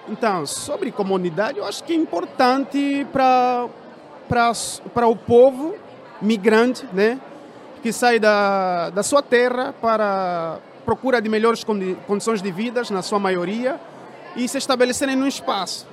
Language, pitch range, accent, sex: Portuguese, 220-260 Hz, Brazilian, male